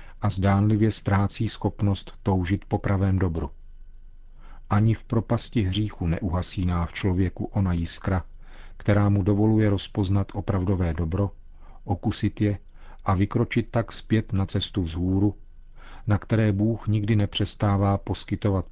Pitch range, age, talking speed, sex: 90-105 Hz, 40-59, 120 wpm, male